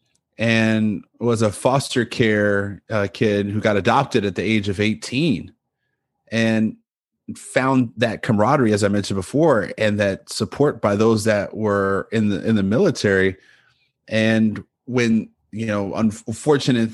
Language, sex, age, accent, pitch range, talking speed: English, male, 30-49, American, 110-140 Hz, 140 wpm